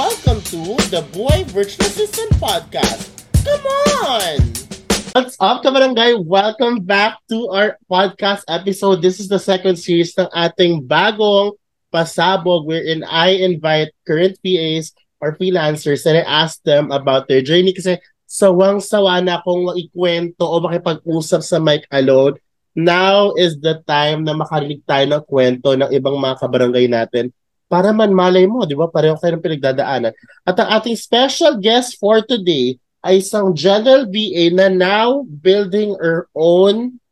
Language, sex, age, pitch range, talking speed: Filipino, male, 20-39, 160-200 Hz, 145 wpm